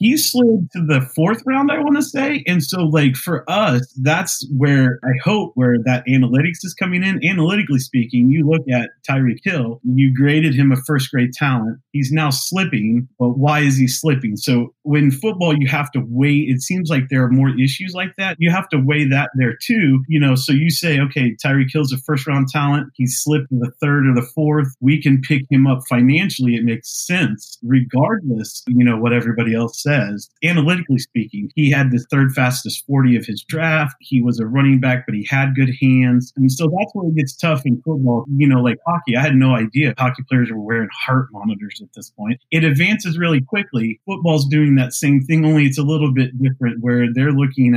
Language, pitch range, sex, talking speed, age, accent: English, 125-155 Hz, male, 215 wpm, 30-49, American